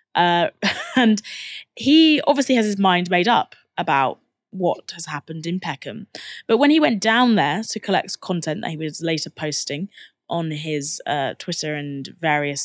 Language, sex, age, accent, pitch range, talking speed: English, female, 20-39, British, 165-215 Hz, 165 wpm